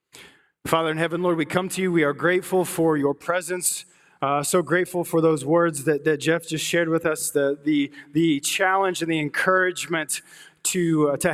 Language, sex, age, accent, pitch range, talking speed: English, male, 20-39, American, 145-175 Hz, 185 wpm